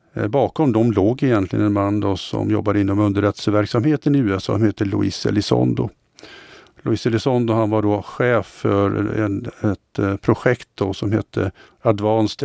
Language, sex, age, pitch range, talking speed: Swedish, male, 50-69, 105-120 Hz, 150 wpm